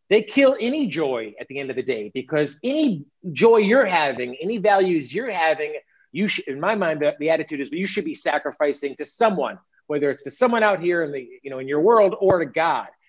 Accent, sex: American, male